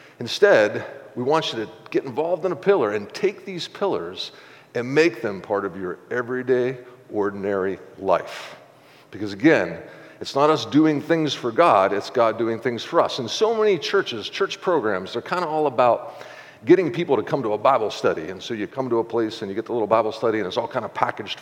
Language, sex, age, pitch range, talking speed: English, male, 50-69, 115-160 Hz, 215 wpm